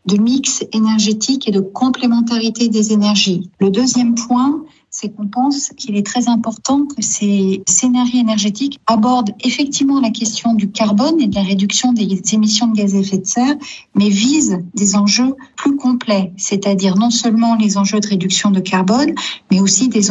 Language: French